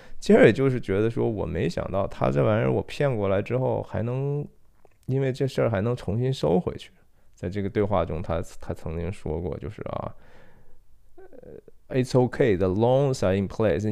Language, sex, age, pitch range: Chinese, male, 20-39, 100-140 Hz